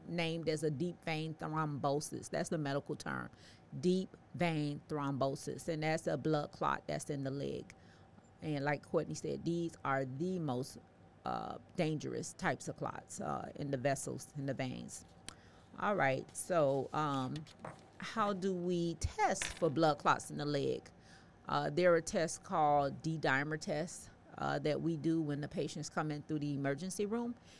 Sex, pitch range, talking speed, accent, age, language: female, 145-170 Hz, 165 wpm, American, 30-49, English